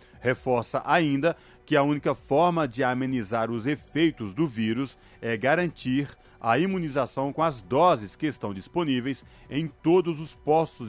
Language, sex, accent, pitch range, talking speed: Portuguese, male, Brazilian, 115-150 Hz, 145 wpm